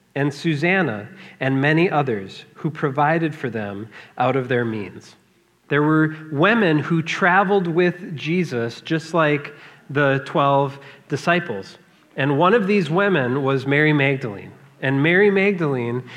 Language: English